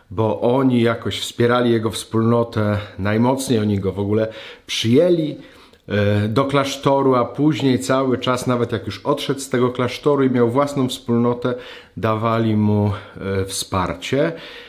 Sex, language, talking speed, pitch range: male, Polish, 130 wpm, 100-130 Hz